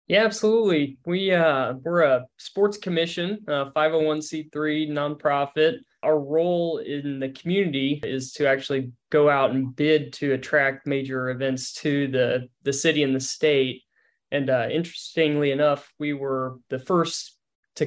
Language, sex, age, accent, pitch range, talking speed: English, male, 20-39, American, 135-155 Hz, 140 wpm